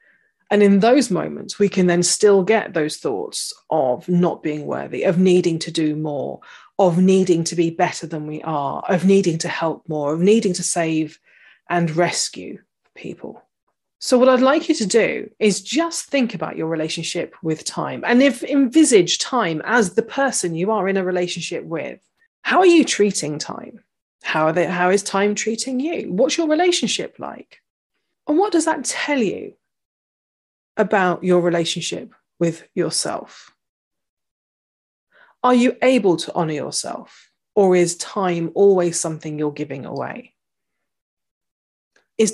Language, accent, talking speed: English, British, 155 wpm